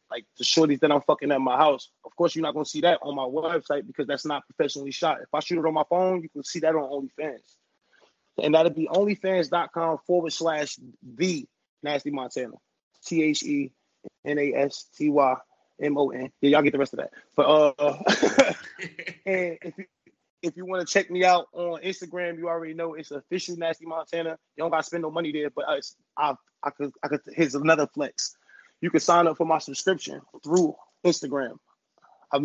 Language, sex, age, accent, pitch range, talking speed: English, male, 20-39, American, 145-170 Hz, 205 wpm